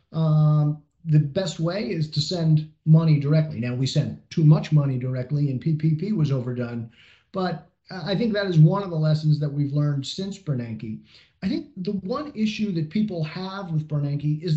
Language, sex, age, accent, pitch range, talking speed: English, male, 40-59, American, 150-205 Hz, 185 wpm